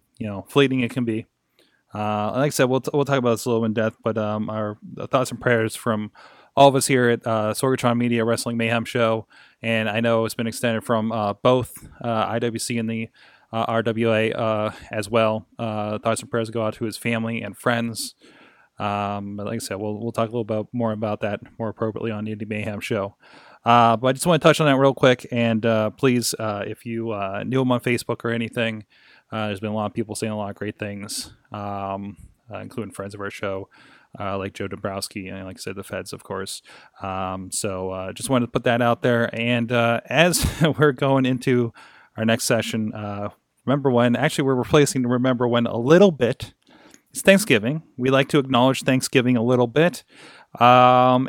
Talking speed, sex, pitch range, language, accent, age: 220 wpm, male, 110-130 Hz, English, American, 20-39